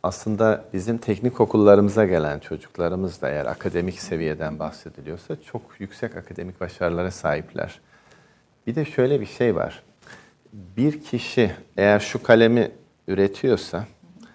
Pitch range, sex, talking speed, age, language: 90-115 Hz, male, 115 wpm, 50-69, Turkish